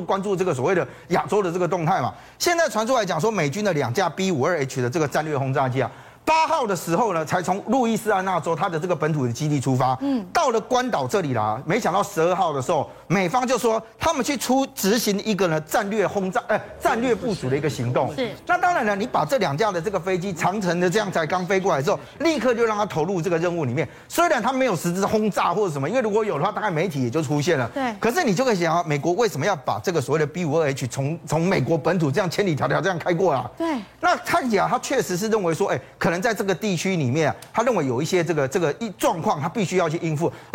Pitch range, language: 155-215 Hz, Chinese